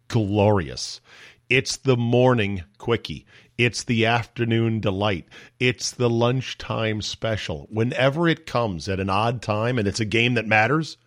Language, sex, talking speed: English, male, 140 wpm